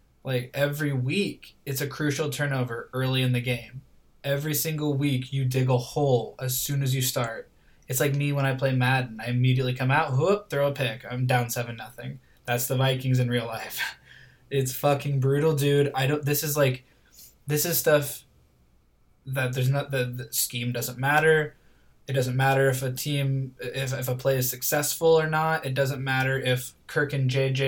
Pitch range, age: 125-140 Hz, 20-39